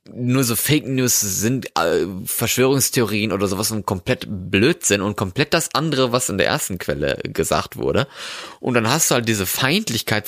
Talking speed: 175 wpm